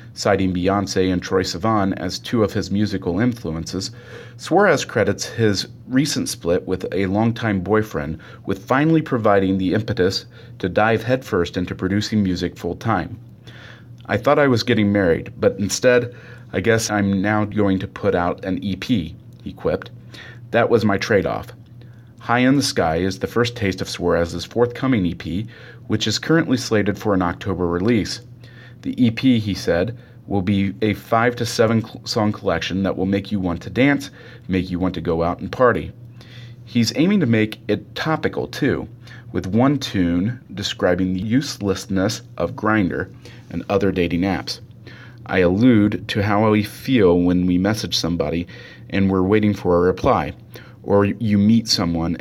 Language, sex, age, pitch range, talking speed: English, male, 40-59, 95-120 Hz, 165 wpm